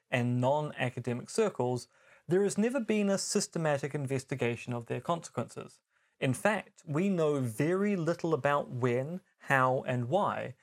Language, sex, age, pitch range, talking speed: English, male, 30-49, 130-180 Hz, 135 wpm